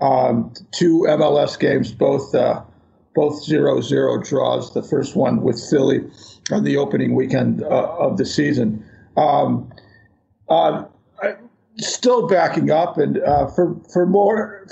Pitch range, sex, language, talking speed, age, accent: 145-165 Hz, male, English, 135 wpm, 50-69, American